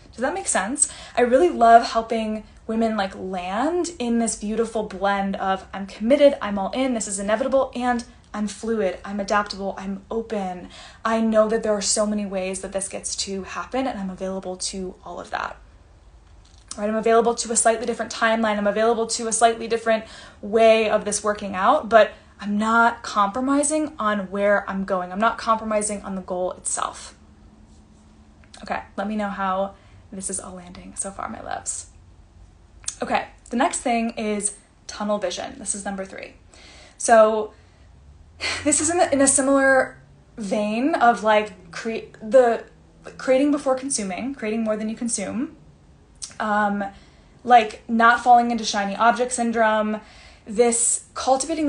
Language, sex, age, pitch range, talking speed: English, female, 10-29, 195-230 Hz, 165 wpm